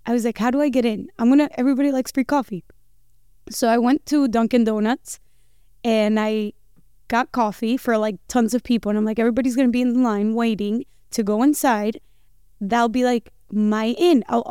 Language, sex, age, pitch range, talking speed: English, female, 20-39, 225-280 Hz, 205 wpm